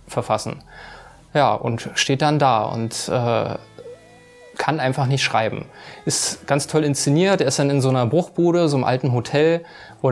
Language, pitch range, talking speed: German, 120-145 Hz, 170 wpm